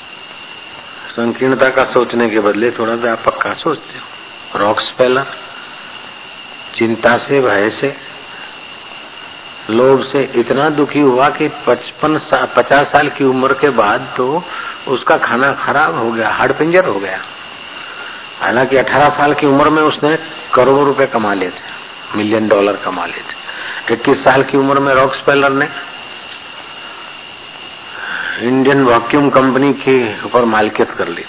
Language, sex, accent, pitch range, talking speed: Hindi, male, native, 120-145 Hz, 130 wpm